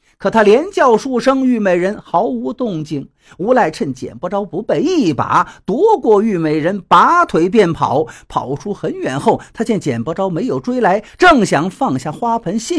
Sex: male